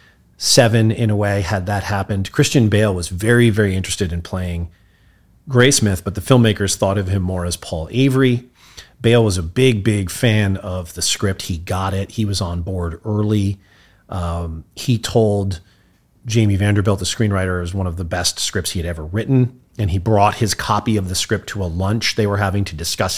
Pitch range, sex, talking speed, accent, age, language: 90-115 Hz, male, 200 wpm, American, 30-49, English